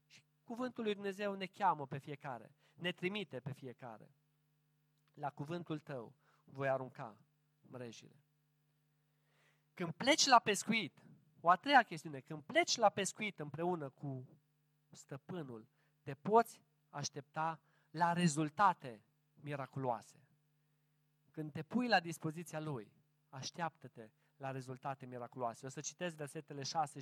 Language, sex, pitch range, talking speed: Romanian, male, 150-215 Hz, 120 wpm